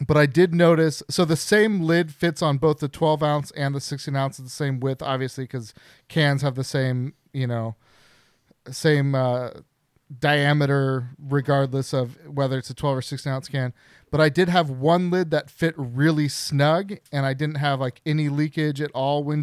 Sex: male